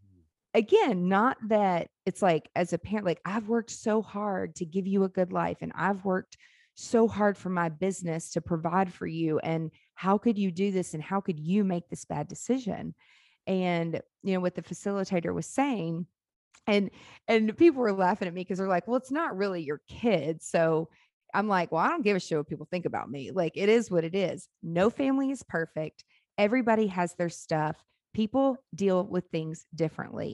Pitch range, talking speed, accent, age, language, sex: 170-210 Hz, 200 wpm, American, 30-49, English, female